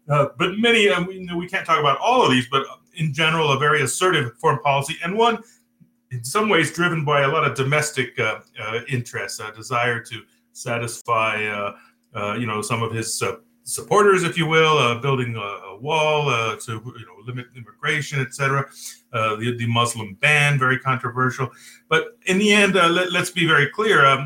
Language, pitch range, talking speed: English, 120-160 Hz, 185 wpm